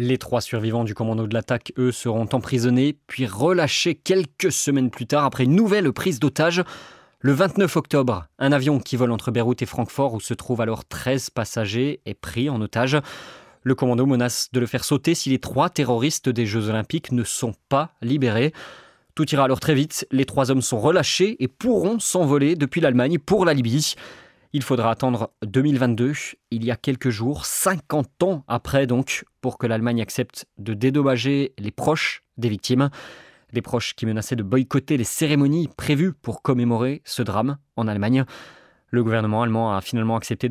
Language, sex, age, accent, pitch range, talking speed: French, male, 20-39, French, 115-145 Hz, 180 wpm